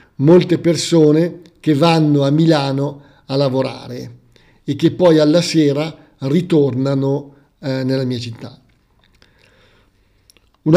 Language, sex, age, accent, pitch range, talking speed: Italian, male, 50-69, native, 140-175 Hz, 105 wpm